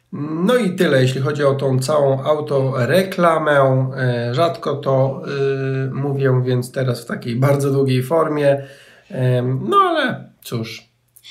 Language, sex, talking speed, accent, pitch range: Polish, male, 115 wpm, native, 130-150 Hz